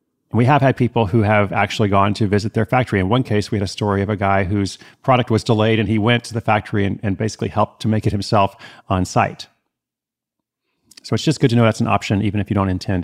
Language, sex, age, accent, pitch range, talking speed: English, male, 30-49, American, 100-125 Hz, 260 wpm